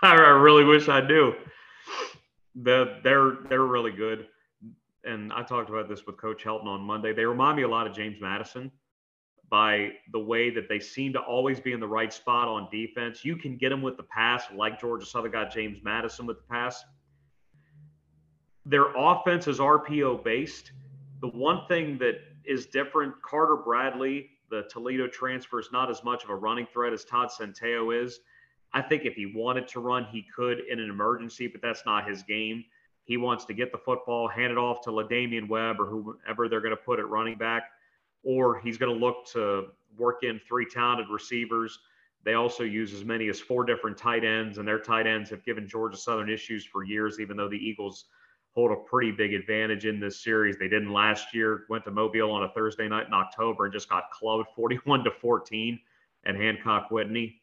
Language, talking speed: English, 195 wpm